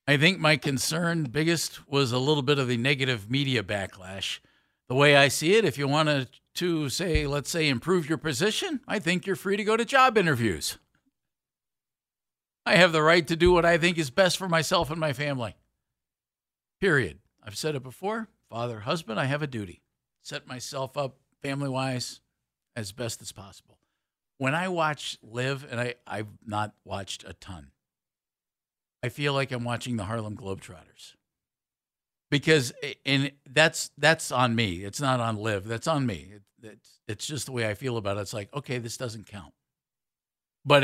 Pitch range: 105-150 Hz